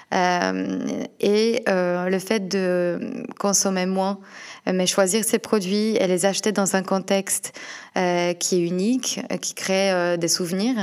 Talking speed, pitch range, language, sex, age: 150 wpm, 175-200 Hz, French, female, 20-39